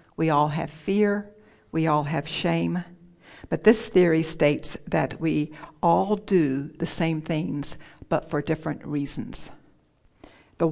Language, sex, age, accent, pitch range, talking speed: English, female, 60-79, American, 145-170 Hz, 135 wpm